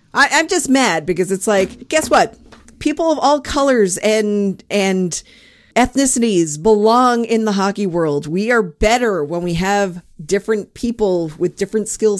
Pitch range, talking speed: 185-250 Hz, 155 wpm